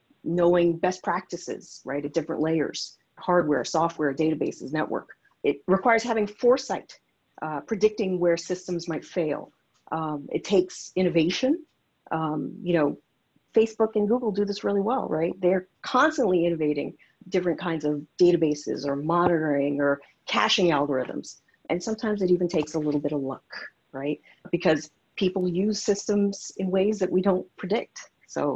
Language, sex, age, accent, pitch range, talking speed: English, female, 50-69, American, 150-190 Hz, 145 wpm